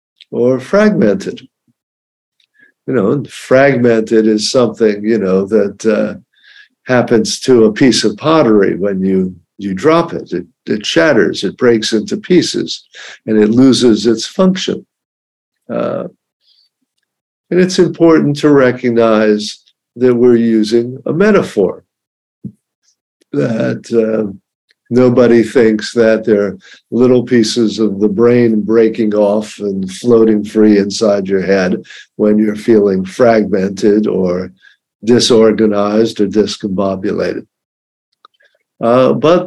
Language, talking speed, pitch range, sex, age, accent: English, 115 wpm, 105-130 Hz, male, 50-69, American